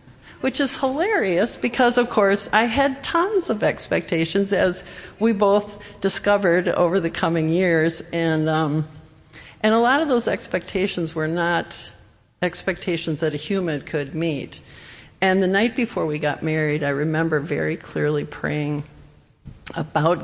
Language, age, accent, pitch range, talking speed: English, 60-79, American, 160-200 Hz, 140 wpm